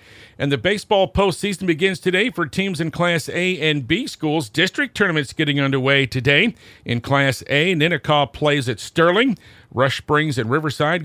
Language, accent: English, American